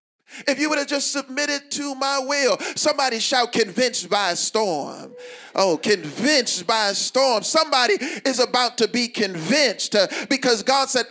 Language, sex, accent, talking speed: English, male, American, 160 wpm